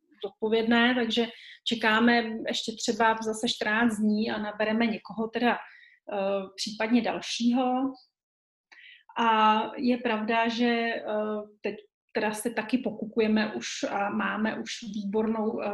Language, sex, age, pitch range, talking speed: Slovak, female, 30-49, 210-240 Hz, 105 wpm